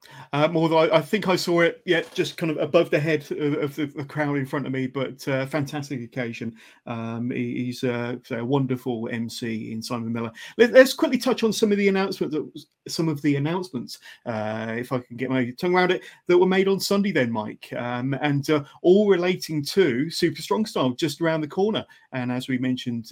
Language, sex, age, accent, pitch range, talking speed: English, male, 30-49, British, 130-155 Hz, 225 wpm